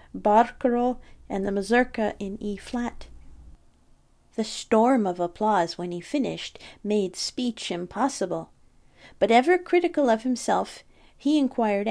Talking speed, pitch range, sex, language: 120 wpm, 195-255 Hz, female, English